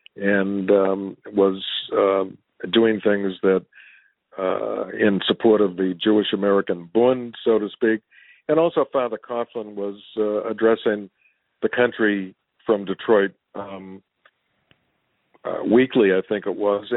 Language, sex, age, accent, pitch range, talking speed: English, male, 50-69, American, 105-130 Hz, 125 wpm